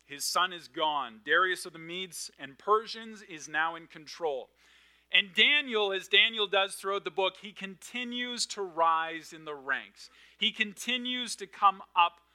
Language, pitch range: English, 155-210 Hz